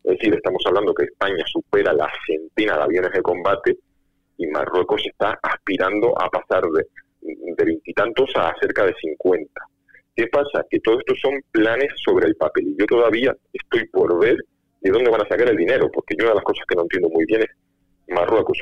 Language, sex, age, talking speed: Spanish, male, 40-59, 200 wpm